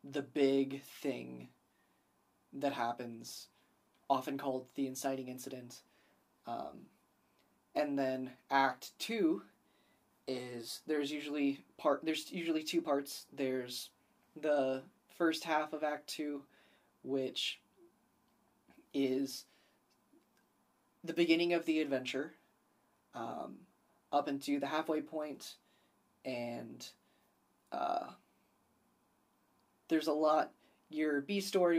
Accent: American